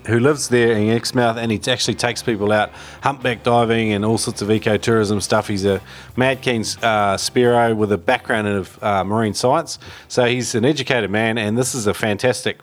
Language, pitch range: English, 110-135 Hz